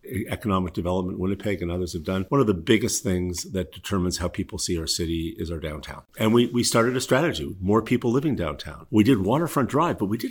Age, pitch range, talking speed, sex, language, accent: 50-69, 90-110 Hz, 235 wpm, male, English, American